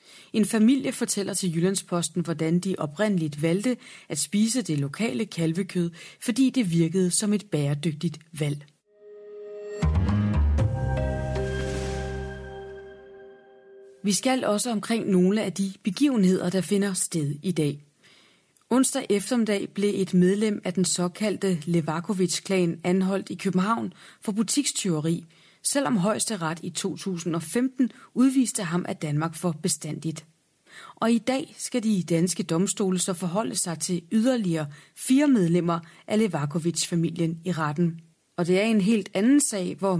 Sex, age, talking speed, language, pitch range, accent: female, 30-49, 130 wpm, Danish, 165-210 Hz, native